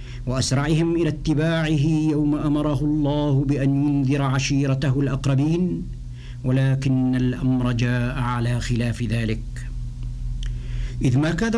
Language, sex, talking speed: Arabic, male, 100 wpm